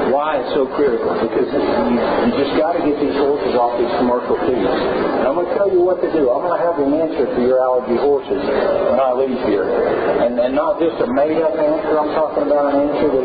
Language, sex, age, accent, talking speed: English, male, 50-69, American, 240 wpm